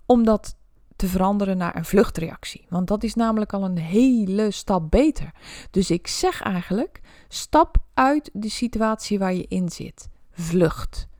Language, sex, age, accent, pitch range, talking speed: Dutch, female, 20-39, Dutch, 175-225 Hz, 155 wpm